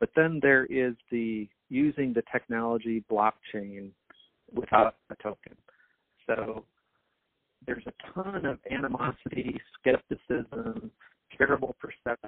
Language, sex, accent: English, male, American